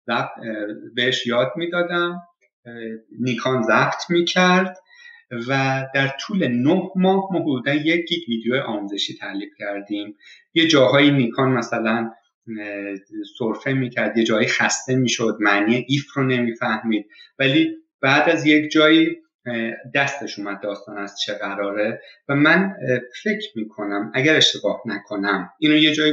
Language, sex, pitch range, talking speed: Persian, male, 110-155 Hz, 125 wpm